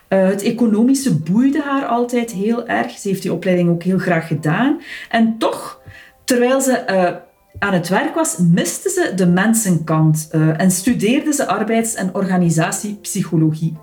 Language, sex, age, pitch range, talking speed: Dutch, female, 40-59, 165-235 Hz, 155 wpm